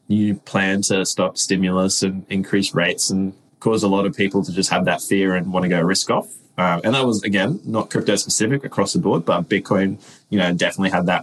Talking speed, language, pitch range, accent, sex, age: 225 wpm, English, 95-110 Hz, Australian, male, 20-39